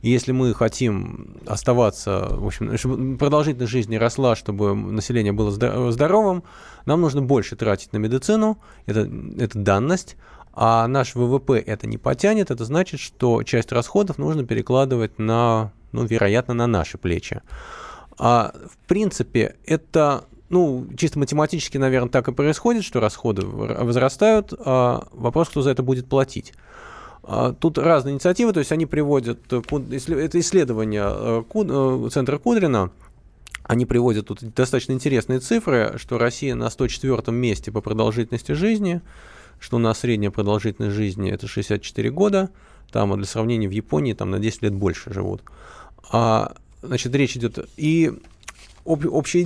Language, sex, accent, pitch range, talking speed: Russian, male, native, 110-145 Hz, 140 wpm